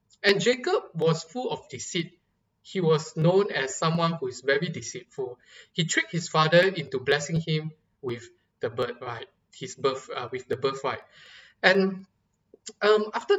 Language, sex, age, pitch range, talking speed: English, male, 20-39, 150-225 Hz, 150 wpm